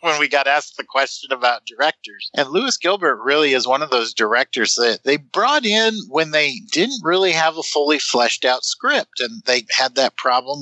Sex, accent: male, American